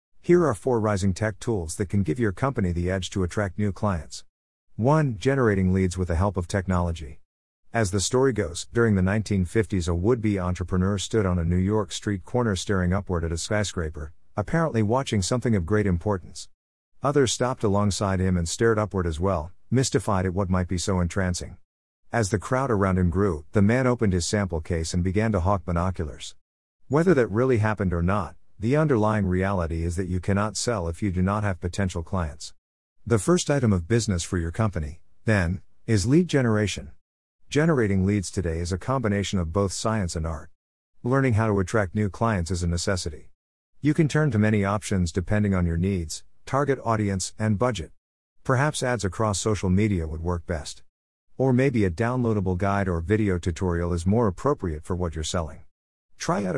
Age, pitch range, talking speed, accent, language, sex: 50-69, 90-110 Hz, 190 wpm, American, English, male